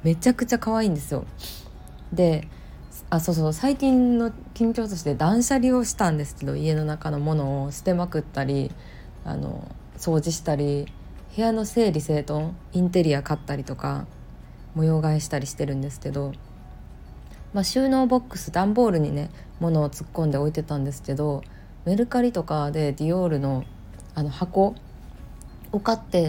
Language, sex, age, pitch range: Japanese, female, 20-39, 145-195 Hz